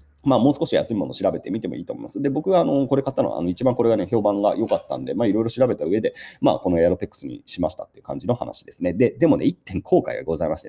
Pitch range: 100-170 Hz